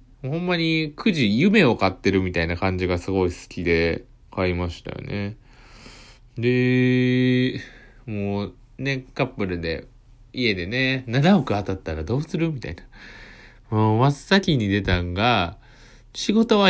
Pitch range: 95-130 Hz